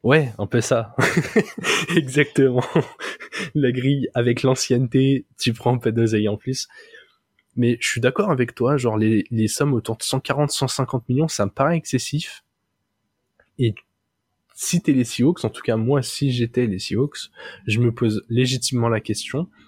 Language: French